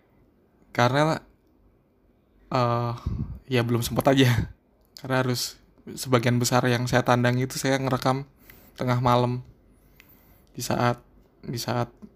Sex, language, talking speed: male, Indonesian, 110 wpm